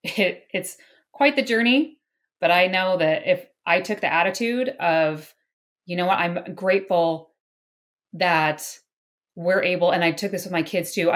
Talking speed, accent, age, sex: 165 wpm, American, 30-49, female